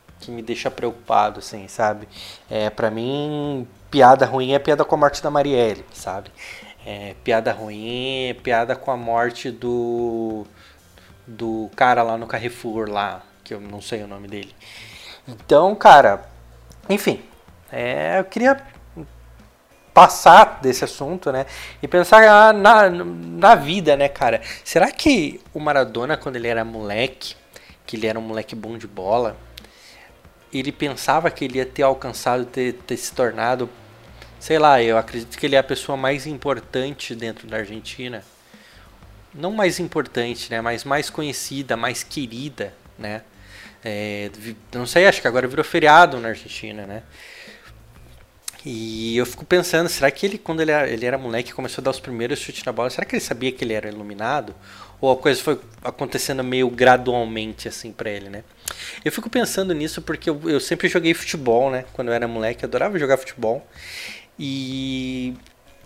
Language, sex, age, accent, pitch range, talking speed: Portuguese, male, 20-39, Brazilian, 110-140 Hz, 165 wpm